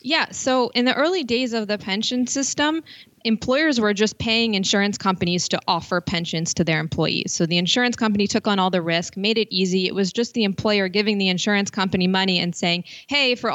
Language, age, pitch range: English, 20-39, 180-220 Hz